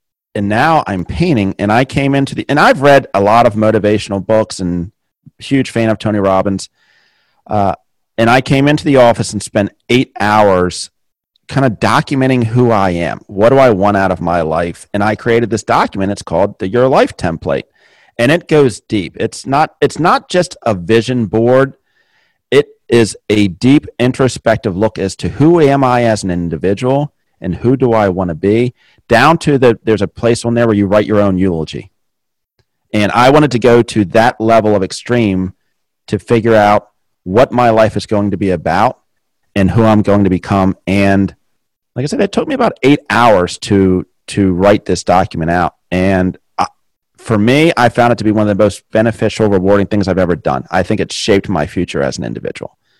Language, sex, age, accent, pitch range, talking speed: English, male, 40-59, American, 95-120 Hz, 200 wpm